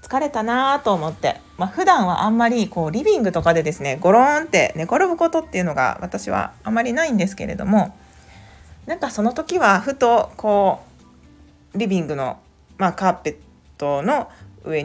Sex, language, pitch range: female, Japanese, 150-235 Hz